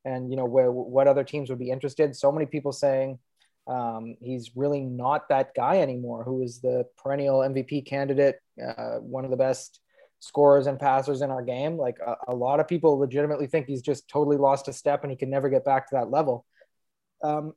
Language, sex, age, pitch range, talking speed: English, male, 20-39, 135-155 Hz, 210 wpm